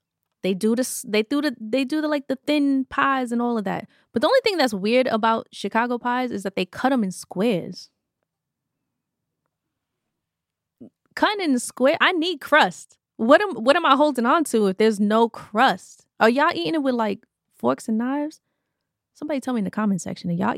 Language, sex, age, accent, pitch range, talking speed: English, female, 20-39, American, 195-270 Hz, 200 wpm